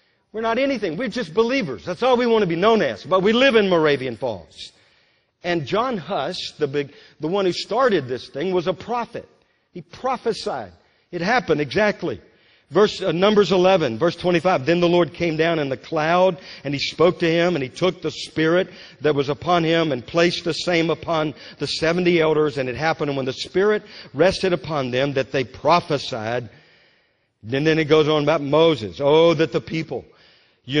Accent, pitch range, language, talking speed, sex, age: American, 140-190 Hz, English, 195 wpm, male, 50-69